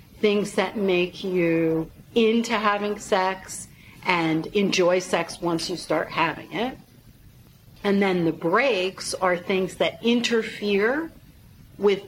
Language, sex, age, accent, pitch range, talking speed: English, female, 50-69, American, 165-205 Hz, 120 wpm